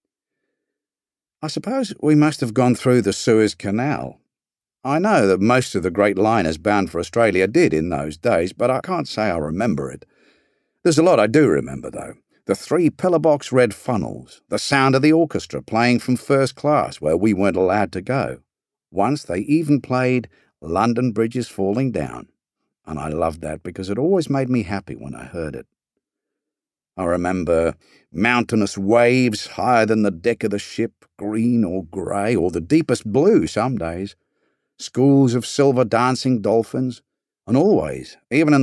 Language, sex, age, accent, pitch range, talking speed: English, male, 50-69, British, 95-130 Hz, 170 wpm